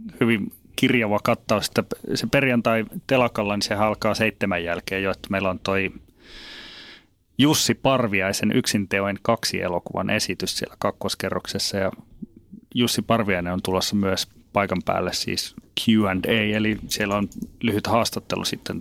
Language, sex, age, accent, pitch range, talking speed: Finnish, male, 30-49, native, 95-115 Hz, 130 wpm